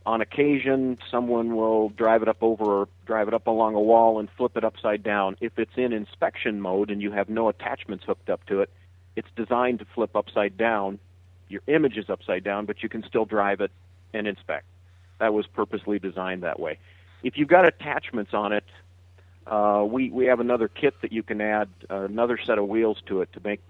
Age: 50-69